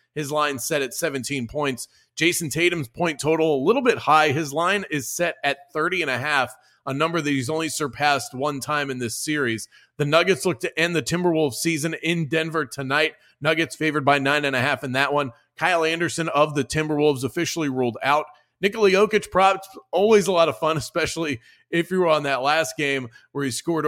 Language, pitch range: English, 135-160 Hz